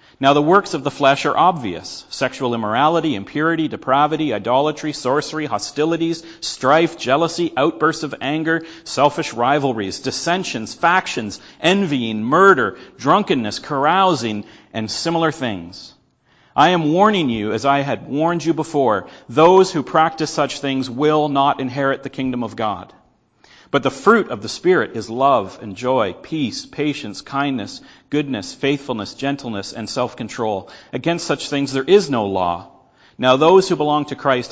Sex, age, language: male, 40-59, English